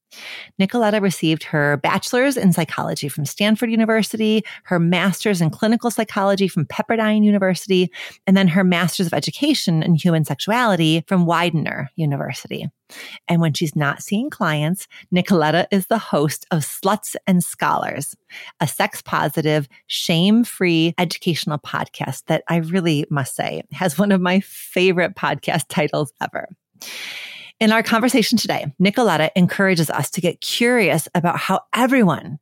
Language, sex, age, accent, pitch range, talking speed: English, female, 30-49, American, 160-210 Hz, 135 wpm